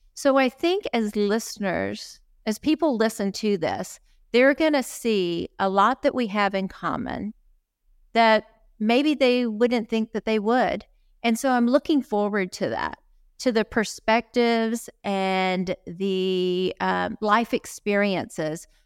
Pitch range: 190-235 Hz